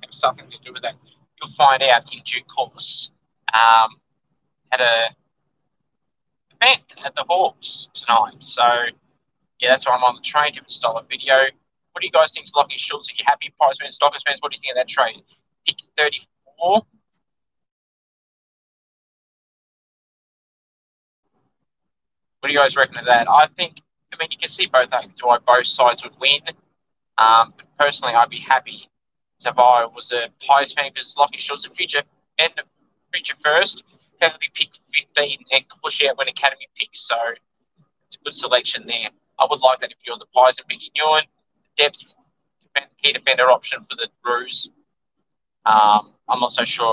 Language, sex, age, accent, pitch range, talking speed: English, male, 20-39, Australian, 120-150 Hz, 170 wpm